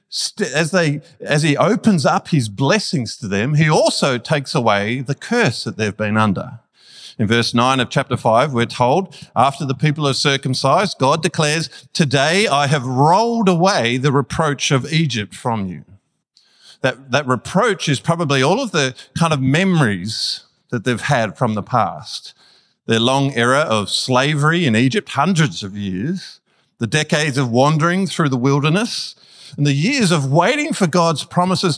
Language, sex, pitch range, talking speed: English, male, 130-180 Hz, 165 wpm